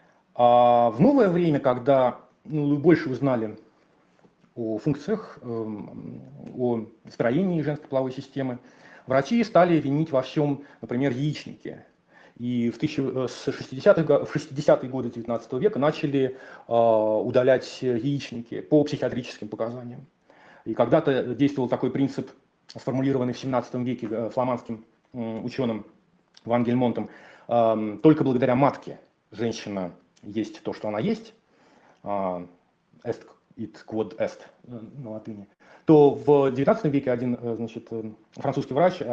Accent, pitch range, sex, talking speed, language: native, 120-145 Hz, male, 115 wpm, Russian